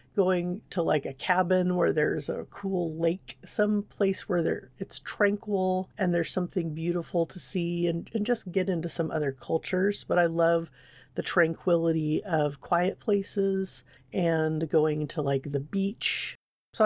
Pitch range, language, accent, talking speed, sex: 150-185 Hz, English, American, 155 wpm, female